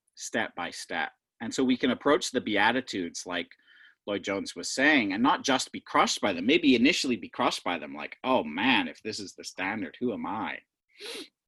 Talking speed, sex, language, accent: 200 wpm, male, English, American